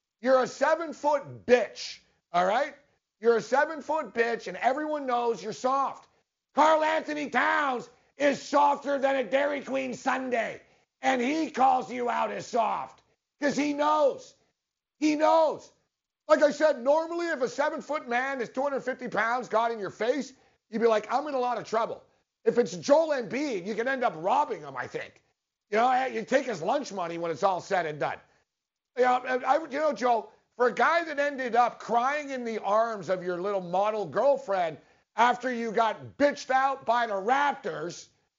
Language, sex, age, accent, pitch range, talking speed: English, male, 50-69, American, 220-280 Hz, 180 wpm